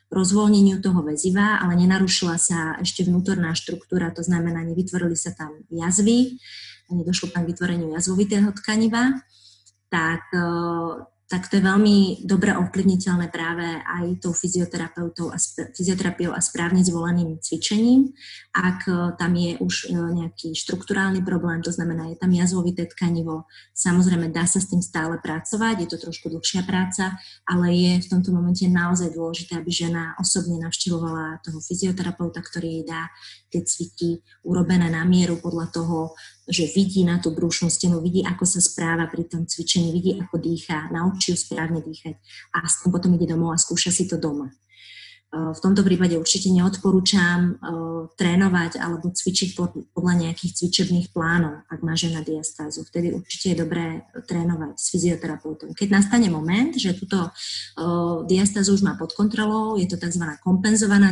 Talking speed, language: 155 wpm, Slovak